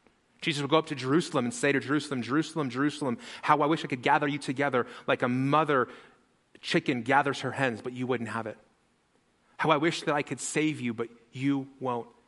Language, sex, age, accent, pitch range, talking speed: English, male, 30-49, American, 115-145 Hz, 210 wpm